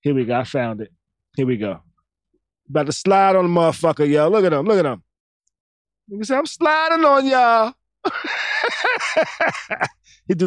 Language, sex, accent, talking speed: English, male, American, 180 wpm